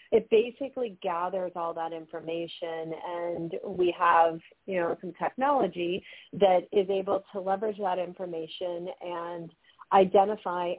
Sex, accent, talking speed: female, American, 120 wpm